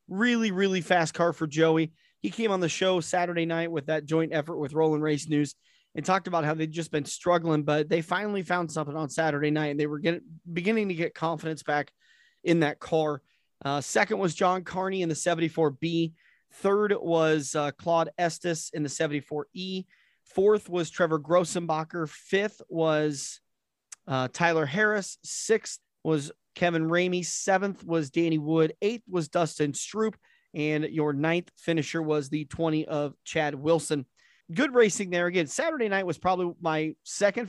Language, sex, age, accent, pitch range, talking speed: English, male, 30-49, American, 155-185 Hz, 170 wpm